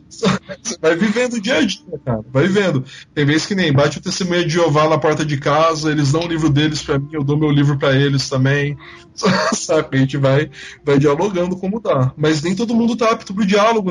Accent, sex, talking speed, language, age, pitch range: Brazilian, male, 230 wpm, Portuguese, 20-39, 130-185 Hz